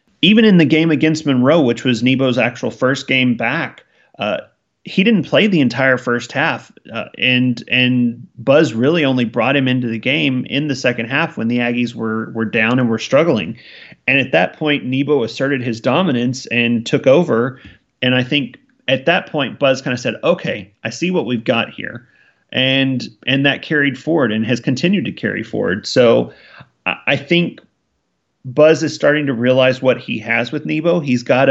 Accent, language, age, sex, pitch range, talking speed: American, English, 30-49, male, 120-145 Hz, 190 wpm